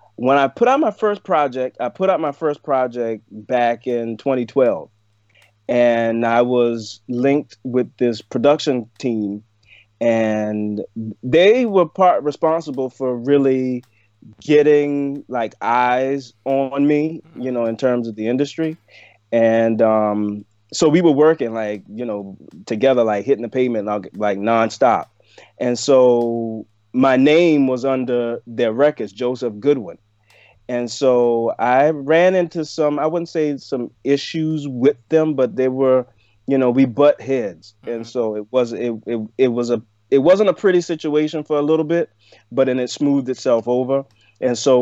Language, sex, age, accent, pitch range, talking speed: English, male, 30-49, American, 110-140 Hz, 155 wpm